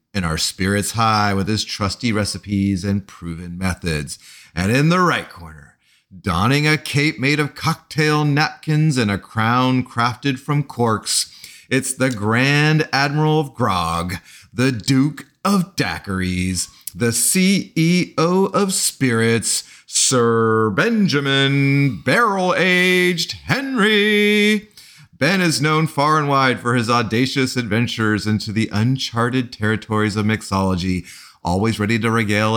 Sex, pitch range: male, 100-145 Hz